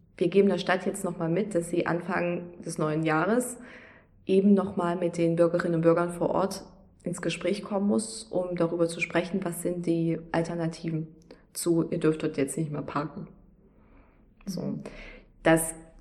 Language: German